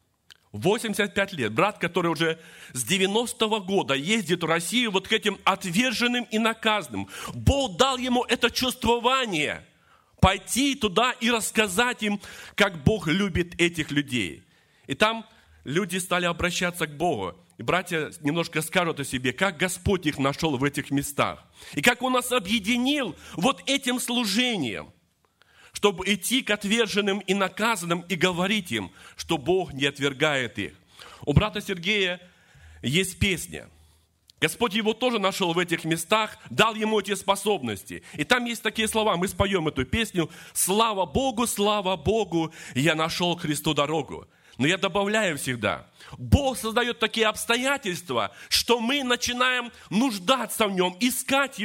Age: 40-59